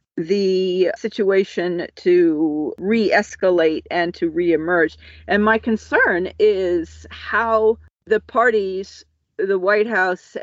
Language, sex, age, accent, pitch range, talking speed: English, female, 40-59, American, 165-220 Hz, 100 wpm